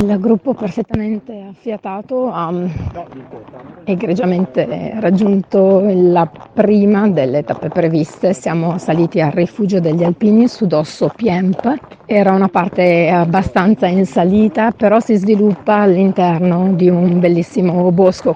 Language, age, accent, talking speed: Italian, 30-49, native, 115 wpm